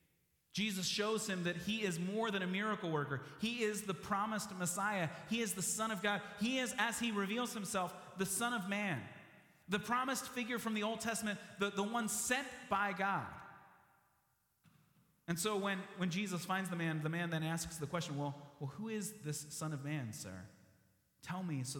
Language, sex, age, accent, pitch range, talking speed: English, male, 30-49, American, 140-195 Hz, 195 wpm